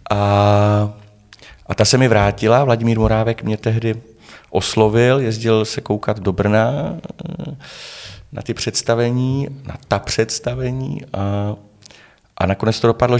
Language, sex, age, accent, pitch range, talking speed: Czech, male, 30-49, native, 95-120 Hz, 125 wpm